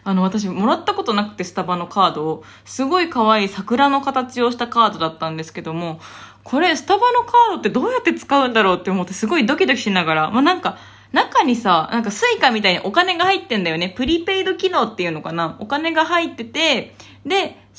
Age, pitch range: 20-39, 180-270 Hz